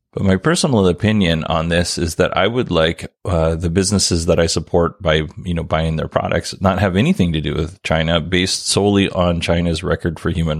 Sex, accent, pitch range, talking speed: male, American, 85-95 Hz, 210 wpm